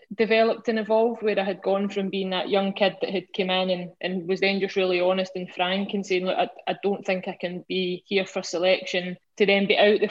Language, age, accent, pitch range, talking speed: English, 20-39, British, 185-205 Hz, 255 wpm